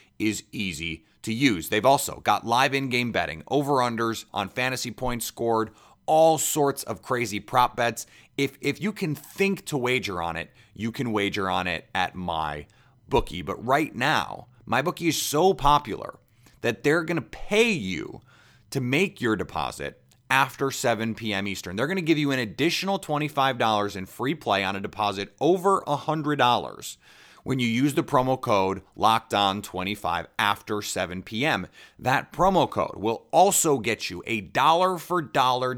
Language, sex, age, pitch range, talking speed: English, male, 30-49, 105-145 Hz, 160 wpm